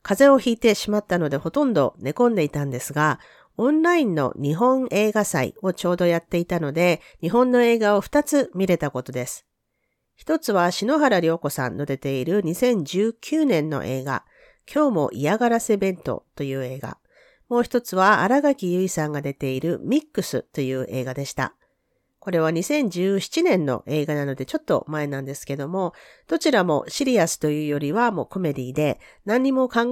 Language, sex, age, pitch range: Japanese, female, 50-69, 145-235 Hz